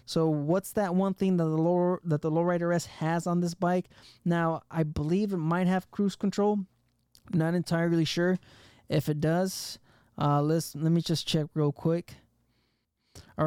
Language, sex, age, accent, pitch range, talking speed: English, male, 20-39, American, 145-170 Hz, 180 wpm